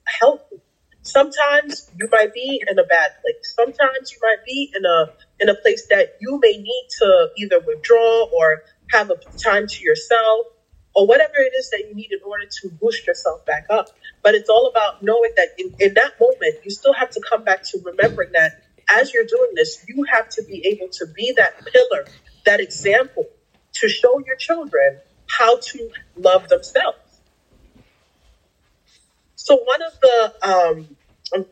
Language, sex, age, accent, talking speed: English, female, 30-49, American, 175 wpm